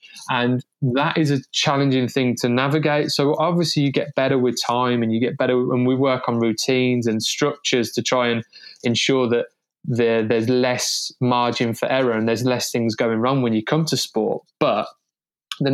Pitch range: 125-150 Hz